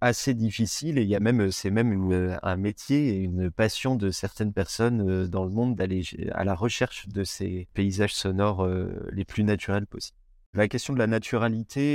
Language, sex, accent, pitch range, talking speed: French, male, French, 95-115 Hz, 190 wpm